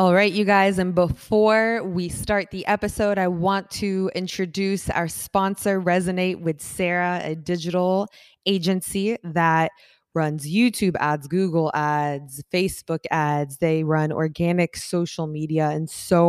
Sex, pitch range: female, 155-180 Hz